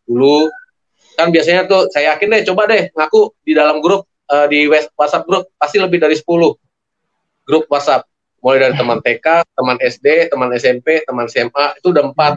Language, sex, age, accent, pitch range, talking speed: Indonesian, male, 30-49, native, 135-195 Hz, 170 wpm